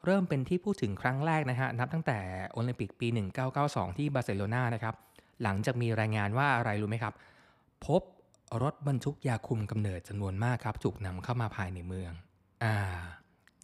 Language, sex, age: Thai, male, 20-39